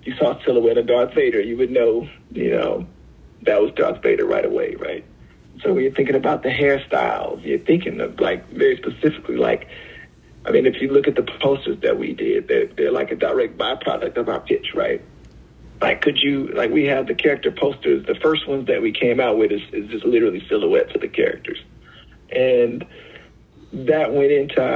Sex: male